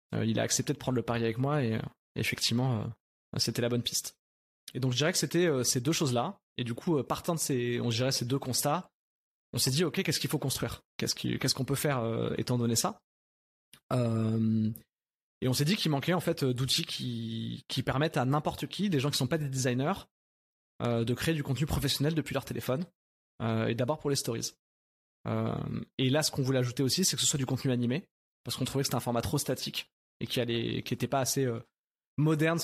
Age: 20-39